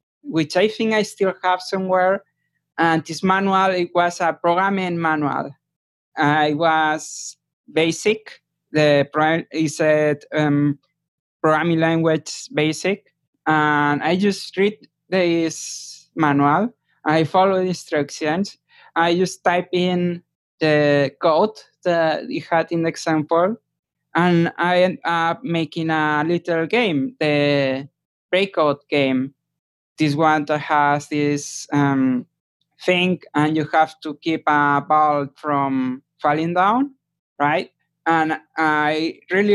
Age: 20-39